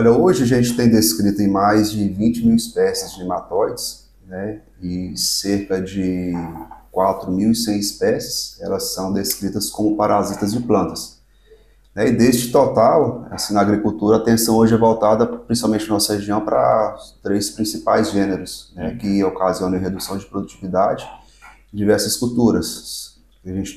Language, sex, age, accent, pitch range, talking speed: Portuguese, male, 30-49, Brazilian, 95-110 Hz, 145 wpm